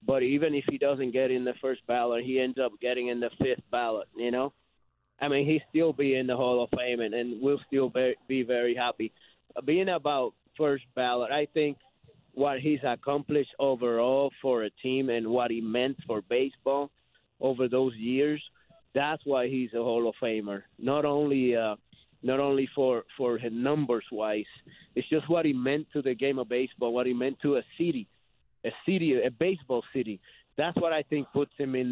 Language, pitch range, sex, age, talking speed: English, 120-145 Hz, male, 30-49, 195 wpm